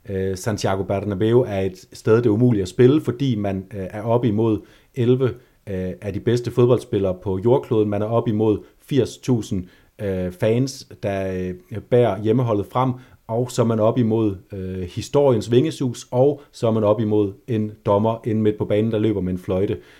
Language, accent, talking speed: Danish, native, 170 wpm